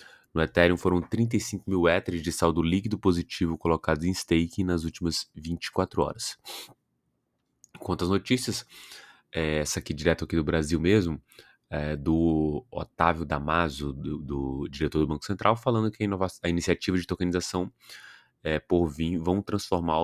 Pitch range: 75-90 Hz